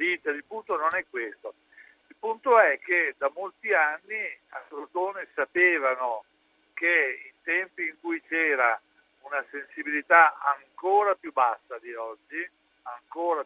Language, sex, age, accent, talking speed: Italian, male, 60-79, native, 130 wpm